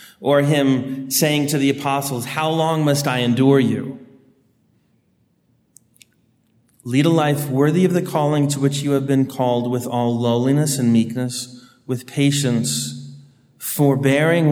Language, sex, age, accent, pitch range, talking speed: English, male, 30-49, American, 120-140 Hz, 135 wpm